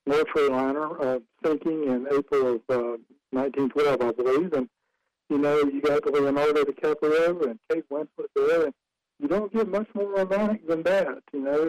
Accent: American